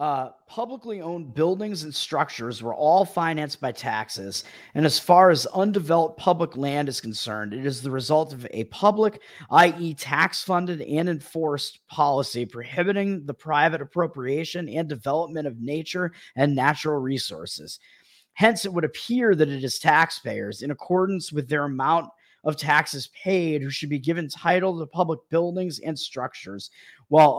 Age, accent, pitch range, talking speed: 30-49, American, 135-175 Hz, 155 wpm